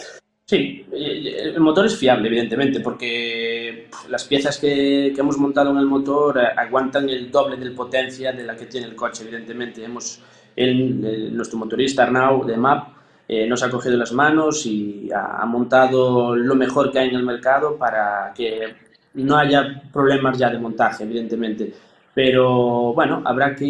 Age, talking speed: 20-39, 165 wpm